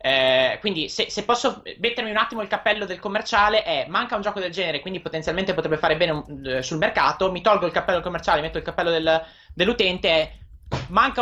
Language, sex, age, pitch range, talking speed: Italian, male, 20-39, 150-215 Hz, 195 wpm